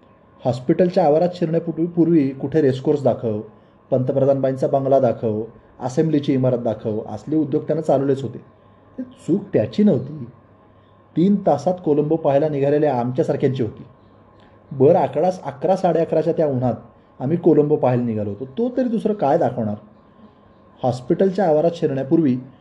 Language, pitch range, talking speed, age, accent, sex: Marathi, 120-160 Hz, 130 wpm, 20-39, native, male